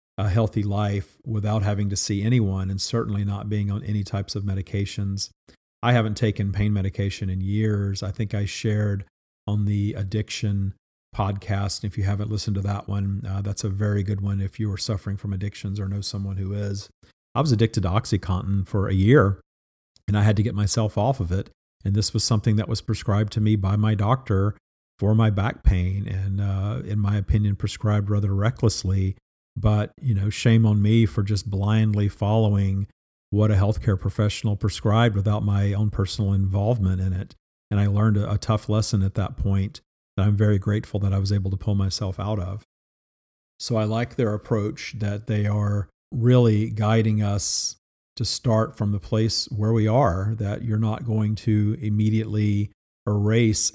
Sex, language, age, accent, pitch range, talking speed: male, English, 50-69, American, 100-110 Hz, 190 wpm